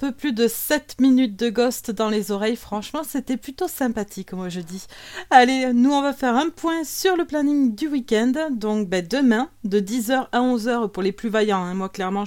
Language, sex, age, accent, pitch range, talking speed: French, female, 30-49, French, 200-265 Hz, 210 wpm